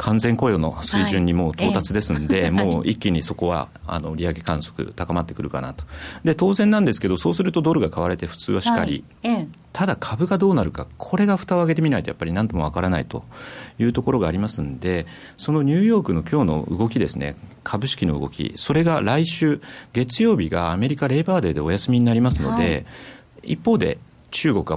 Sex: male